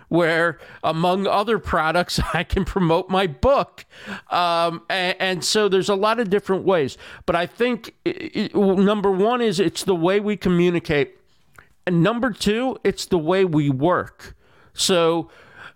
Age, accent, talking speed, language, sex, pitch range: 50-69, American, 160 wpm, English, male, 150-195 Hz